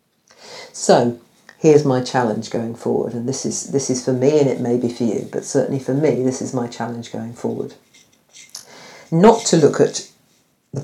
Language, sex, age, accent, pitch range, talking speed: English, female, 50-69, British, 120-150 Hz, 190 wpm